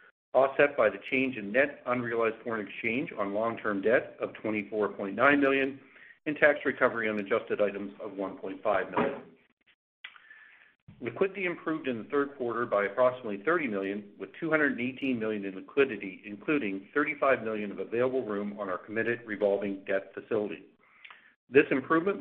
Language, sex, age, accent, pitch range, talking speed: English, male, 50-69, American, 105-140 Hz, 145 wpm